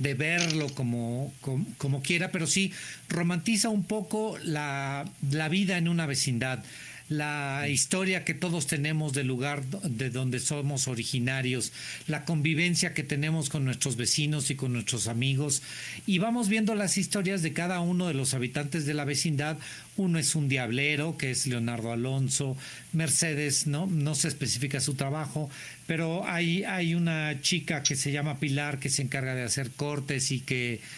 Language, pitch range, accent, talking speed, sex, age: Spanish, 135-165 Hz, Mexican, 165 wpm, male, 50-69